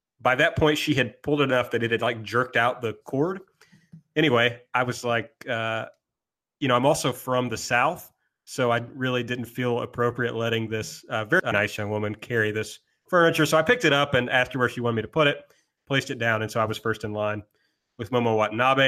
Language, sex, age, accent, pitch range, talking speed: English, male, 30-49, American, 120-150 Hz, 225 wpm